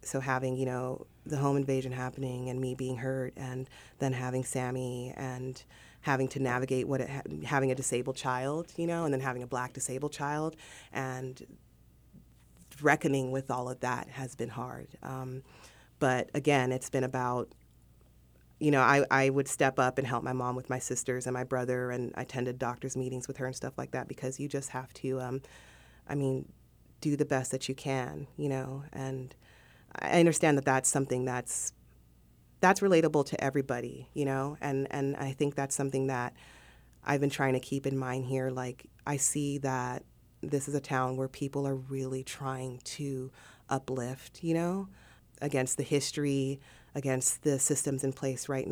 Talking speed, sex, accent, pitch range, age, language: 185 wpm, female, American, 125-140 Hz, 30-49, English